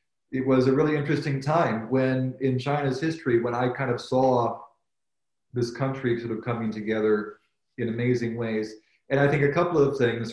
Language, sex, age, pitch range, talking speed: English, male, 40-59, 110-135 Hz, 180 wpm